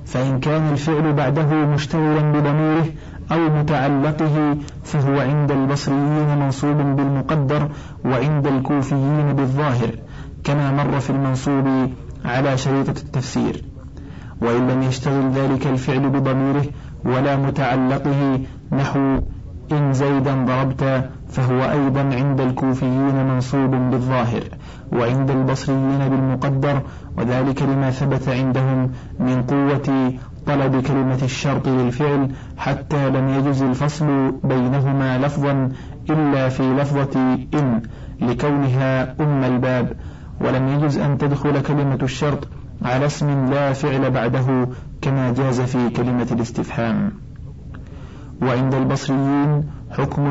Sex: male